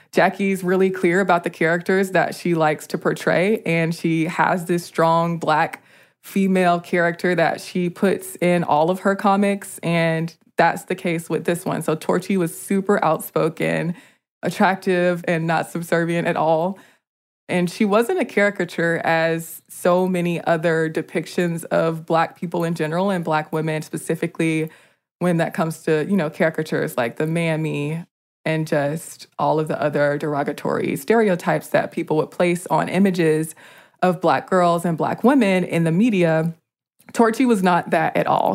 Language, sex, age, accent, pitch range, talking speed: English, female, 20-39, American, 160-190 Hz, 160 wpm